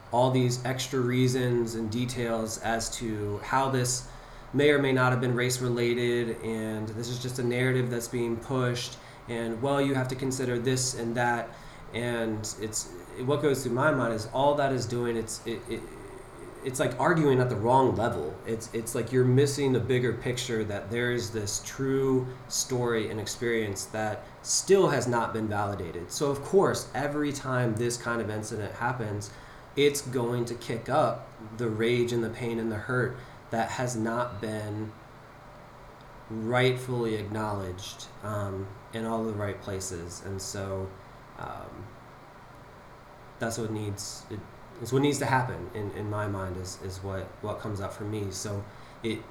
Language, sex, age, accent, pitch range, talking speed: English, male, 20-39, American, 110-130 Hz, 170 wpm